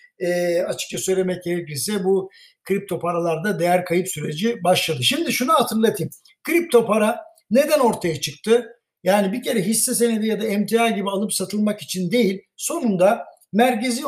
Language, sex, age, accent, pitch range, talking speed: Turkish, male, 60-79, native, 185-235 Hz, 145 wpm